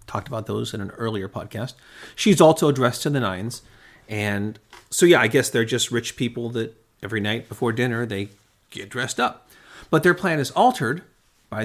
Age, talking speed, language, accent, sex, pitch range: 40-59, 190 wpm, English, American, male, 105-135 Hz